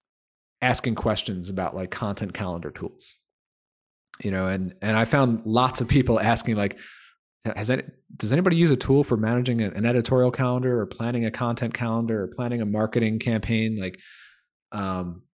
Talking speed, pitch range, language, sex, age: 170 wpm, 100-125 Hz, English, male, 30-49